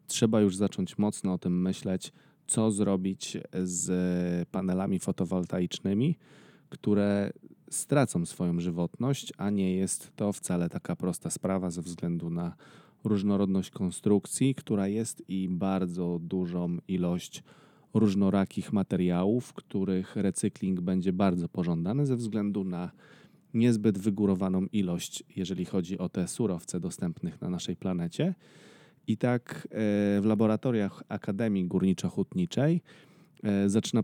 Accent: native